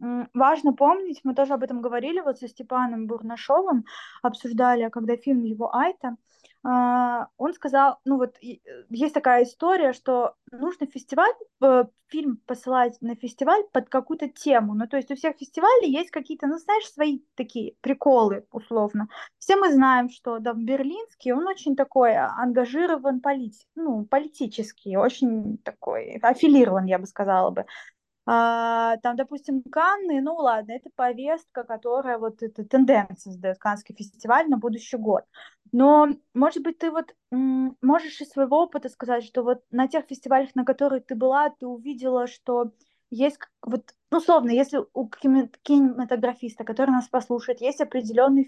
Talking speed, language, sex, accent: 145 wpm, Russian, female, native